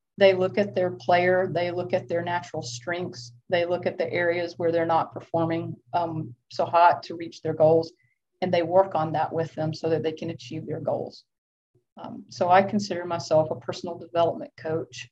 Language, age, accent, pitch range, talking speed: English, 40-59, American, 155-185 Hz, 200 wpm